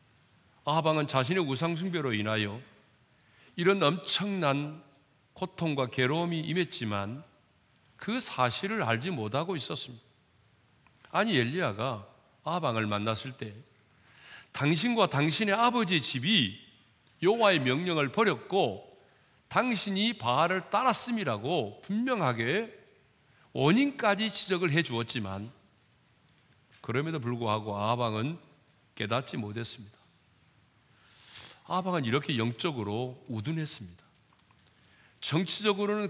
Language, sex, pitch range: Korean, male, 120-195 Hz